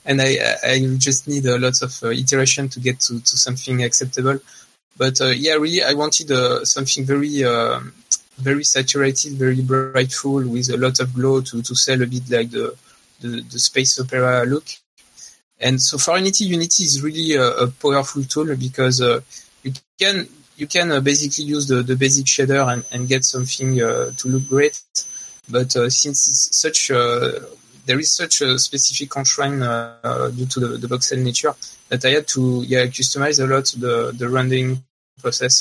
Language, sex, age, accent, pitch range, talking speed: English, male, 20-39, French, 125-140 Hz, 185 wpm